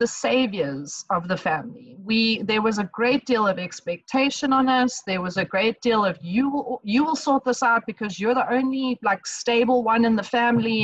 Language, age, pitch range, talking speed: English, 30-49, 195-255 Hz, 205 wpm